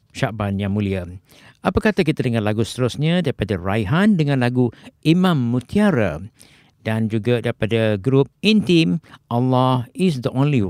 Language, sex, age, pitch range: Japanese, male, 50-69, 110-145 Hz